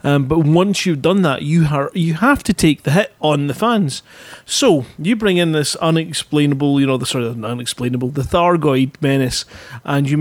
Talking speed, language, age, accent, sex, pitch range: 200 wpm, English, 30-49, British, male, 145-175 Hz